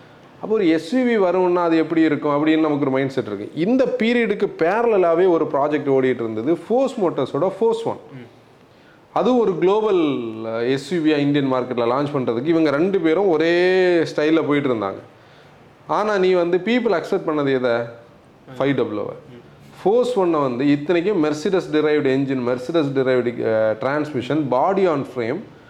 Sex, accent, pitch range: male, native, 135-190 Hz